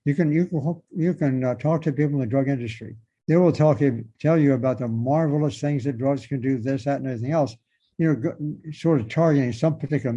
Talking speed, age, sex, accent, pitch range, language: 225 wpm, 60-79, male, American, 130-165 Hz, English